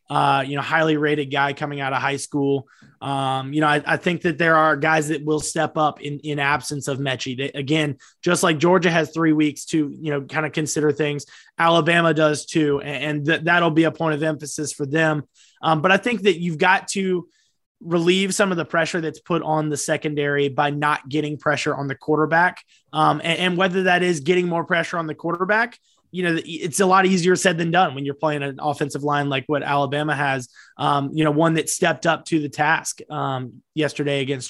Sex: male